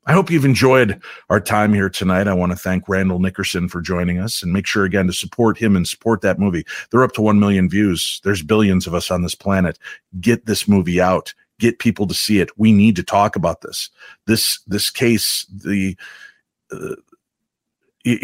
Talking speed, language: 205 wpm, English